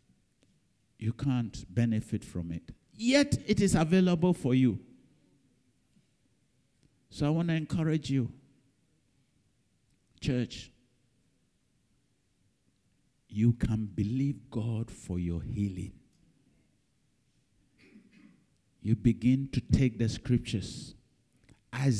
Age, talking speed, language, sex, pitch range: 60-79, 85 wpm, English, male, 110-145 Hz